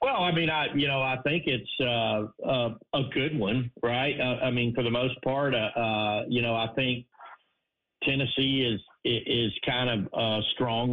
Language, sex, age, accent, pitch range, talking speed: English, male, 50-69, American, 115-135 Hz, 200 wpm